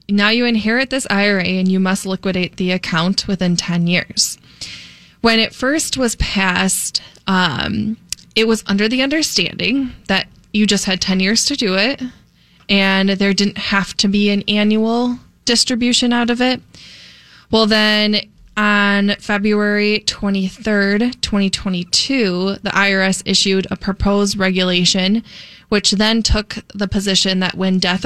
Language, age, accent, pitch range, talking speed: English, 20-39, American, 190-215 Hz, 140 wpm